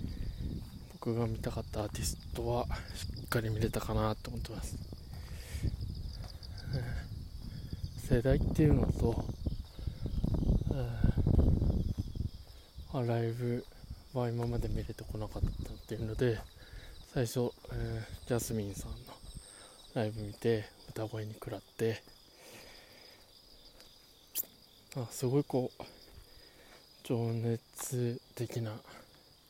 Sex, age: male, 20-39